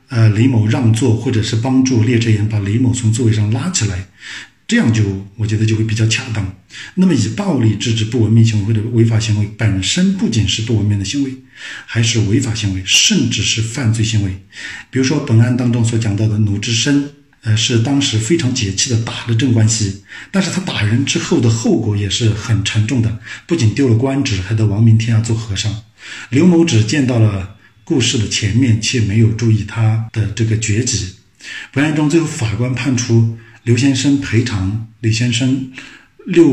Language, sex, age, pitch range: Chinese, male, 50-69, 110-125 Hz